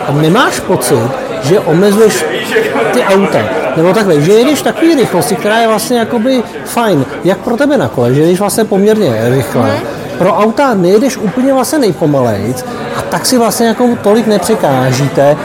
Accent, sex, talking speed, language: native, male, 160 wpm, Czech